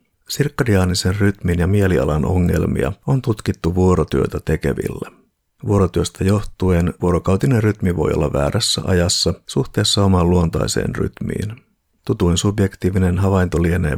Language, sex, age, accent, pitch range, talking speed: Finnish, male, 50-69, native, 85-100 Hz, 105 wpm